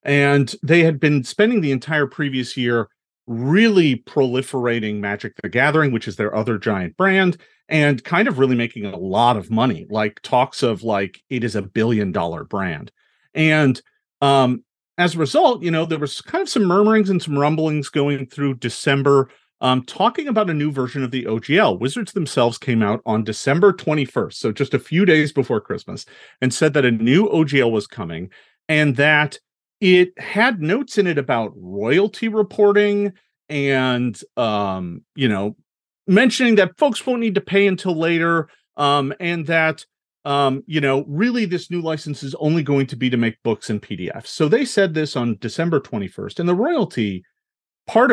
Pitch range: 130-180 Hz